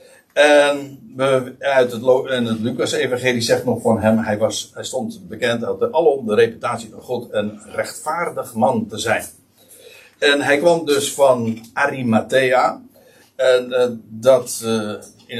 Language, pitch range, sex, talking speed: Dutch, 110-150 Hz, male, 115 wpm